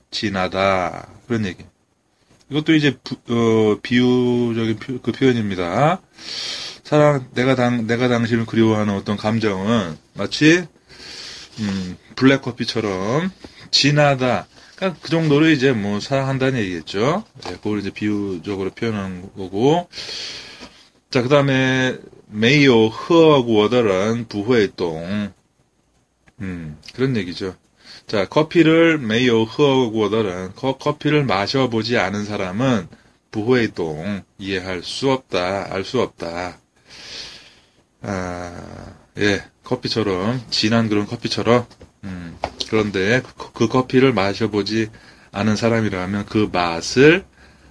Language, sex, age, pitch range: Korean, male, 30-49, 100-130 Hz